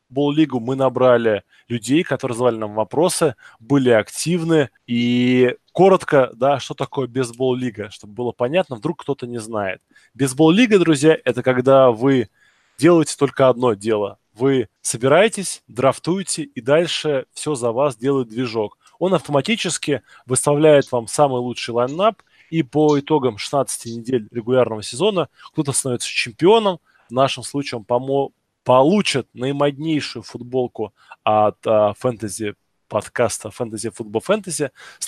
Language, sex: Russian, male